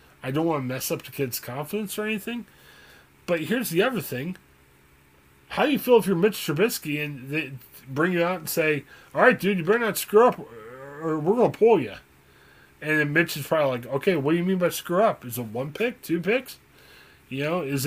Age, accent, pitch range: 20-39, American, 135-190 Hz